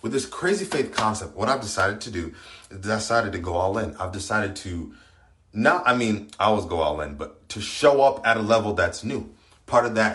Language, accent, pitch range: English, American, 90-110 Hz